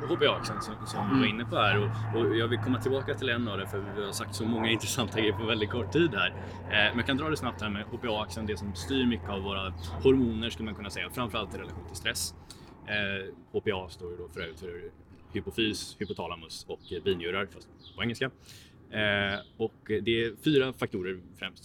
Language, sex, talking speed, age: Swedish, male, 200 wpm, 20-39